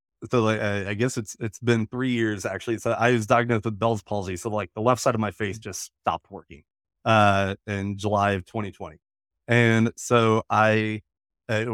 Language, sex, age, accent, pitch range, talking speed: English, male, 30-49, American, 100-120 Hz, 185 wpm